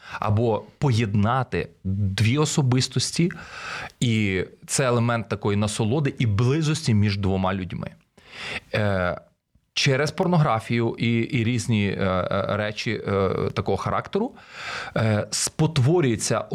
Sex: male